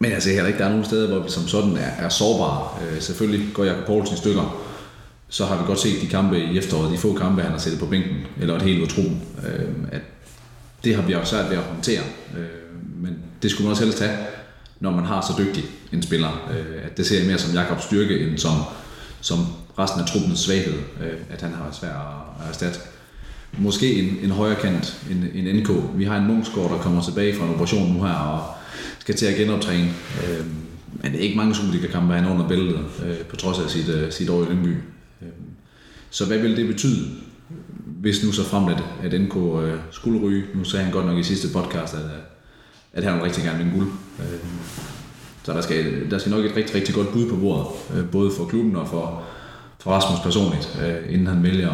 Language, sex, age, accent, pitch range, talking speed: Danish, male, 30-49, native, 85-105 Hz, 215 wpm